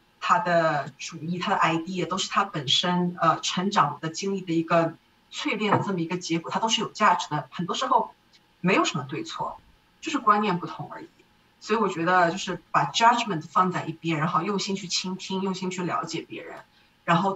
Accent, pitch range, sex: native, 165-195 Hz, female